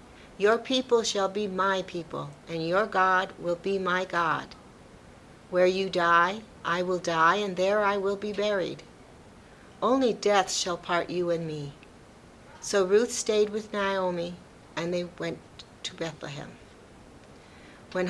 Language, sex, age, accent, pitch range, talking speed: English, female, 60-79, American, 175-205 Hz, 145 wpm